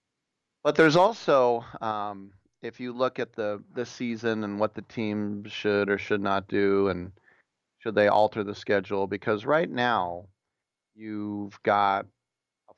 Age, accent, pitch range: 30-49, American, 100-115 Hz